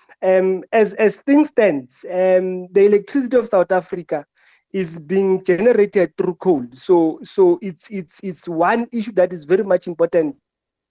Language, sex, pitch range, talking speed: English, male, 170-205 Hz, 155 wpm